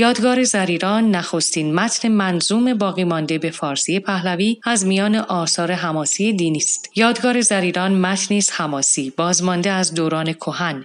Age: 30-49